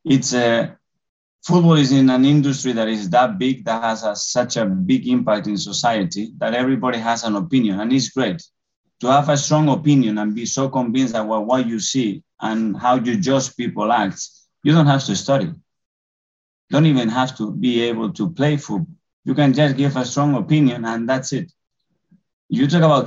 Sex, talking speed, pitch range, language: male, 195 wpm, 110-145 Hz, English